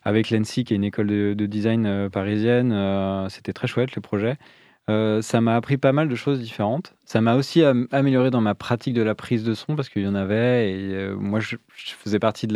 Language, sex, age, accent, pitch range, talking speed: French, male, 20-39, French, 105-120 Hz, 215 wpm